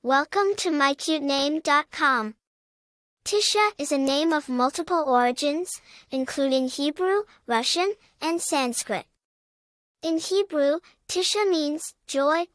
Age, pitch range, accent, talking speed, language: 10-29, 270-340 Hz, American, 95 wpm, English